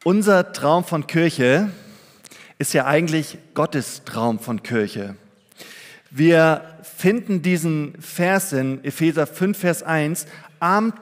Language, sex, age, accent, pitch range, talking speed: German, male, 40-59, German, 145-190 Hz, 115 wpm